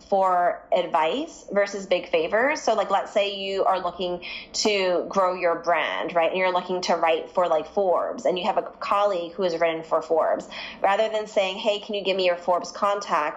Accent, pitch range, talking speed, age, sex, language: American, 170-210 Hz, 205 wpm, 20-39, female, English